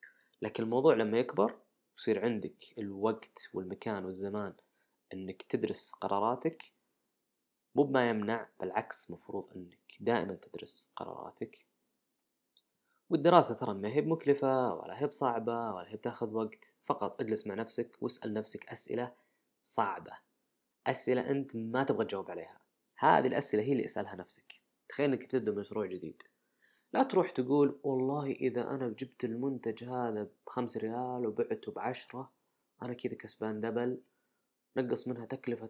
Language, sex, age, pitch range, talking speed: Arabic, female, 20-39, 110-130 Hz, 130 wpm